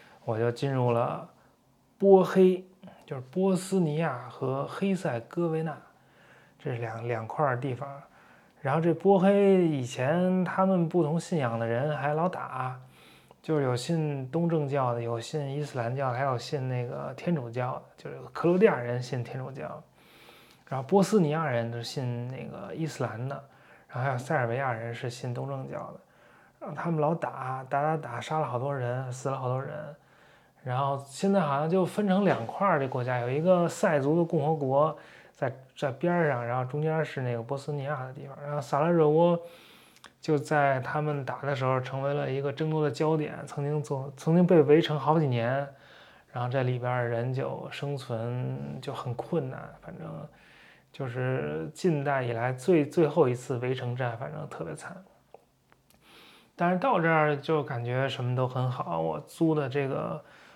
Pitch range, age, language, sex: 125-160 Hz, 20-39, English, male